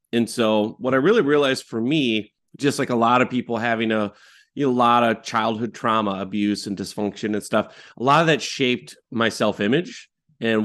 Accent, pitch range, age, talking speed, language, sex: American, 110-130 Hz, 30-49, 205 wpm, English, male